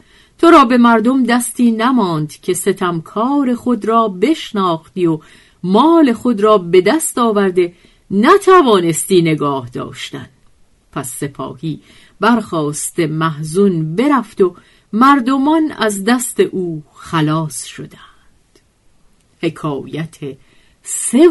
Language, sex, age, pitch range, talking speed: Persian, female, 50-69, 150-230 Hz, 100 wpm